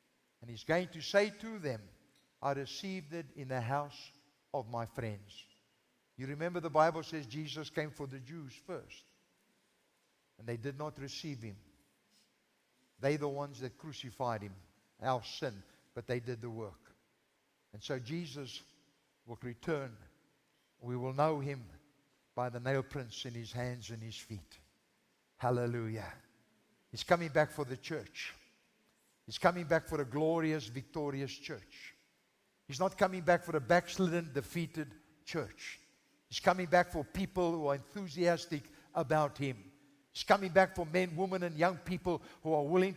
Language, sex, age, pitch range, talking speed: English, male, 60-79, 125-160 Hz, 155 wpm